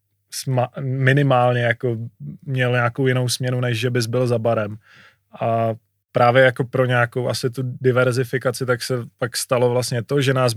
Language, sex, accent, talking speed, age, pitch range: Czech, male, native, 160 wpm, 20-39, 120-135 Hz